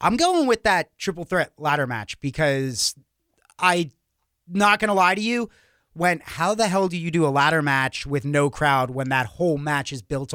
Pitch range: 140-195 Hz